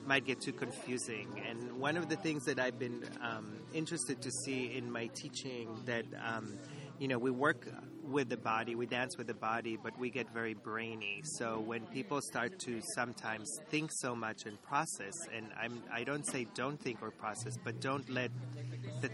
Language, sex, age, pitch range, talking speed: English, male, 30-49, 120-140 Hz, 195 wpm